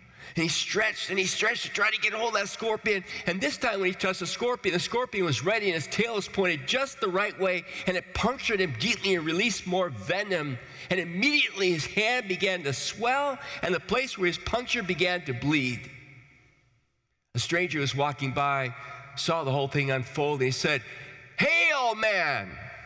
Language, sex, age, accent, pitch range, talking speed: English, male, 40-59, American, 120-190 Hz, 200 wpm